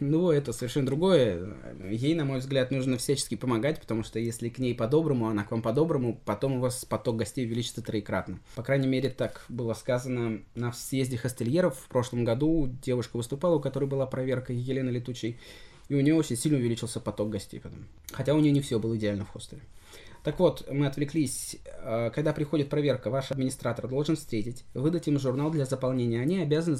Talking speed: 190 wpm